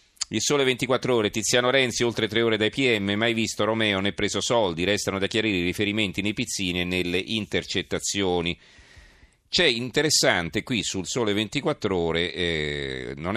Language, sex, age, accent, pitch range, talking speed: Italian, male, 40-59, native, 90-110 Hz, 165 wpm